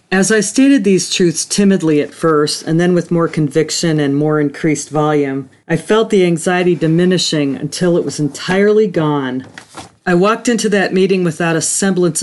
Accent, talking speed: American, 170 wpm